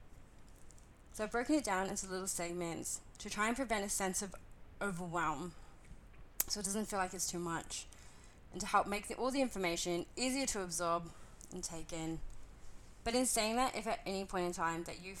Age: 20-39